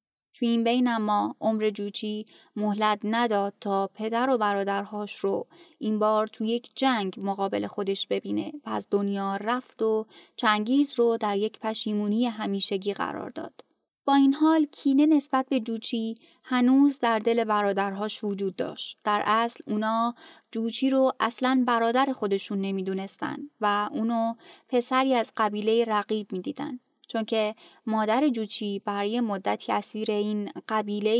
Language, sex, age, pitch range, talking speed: Persian, female, 20-39, 210-250 Hz, 135 wpm